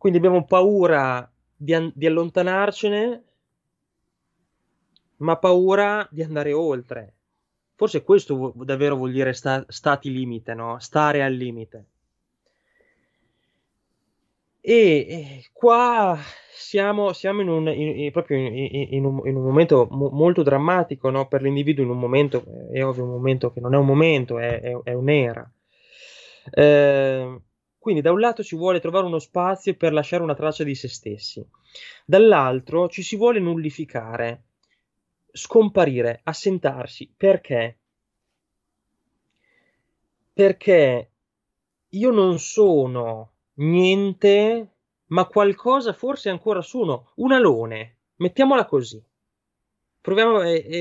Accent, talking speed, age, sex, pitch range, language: native, 120 wpm, 20-39, male, 130-195 Hz, Italian